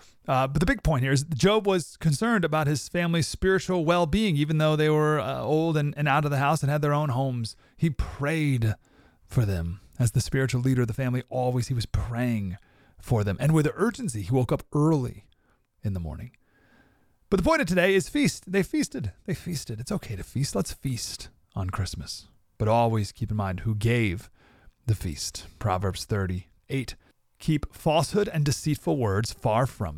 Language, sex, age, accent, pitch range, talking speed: English, male, 30-49, American, 105-155 Hz, 195 wpm